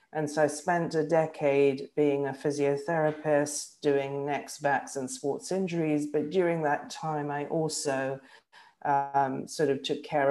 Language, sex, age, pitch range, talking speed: English, female, 50-69, 140-165 Hz, 150 wpm